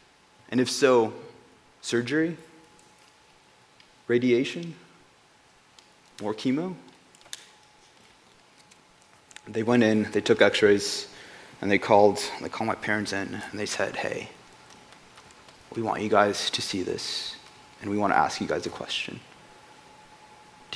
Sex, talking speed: male, 120 wpm